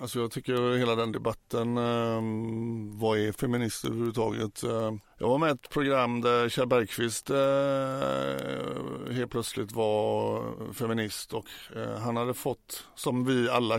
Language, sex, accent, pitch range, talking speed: Swedish, male, native, 110-120 Hz, 140 wpm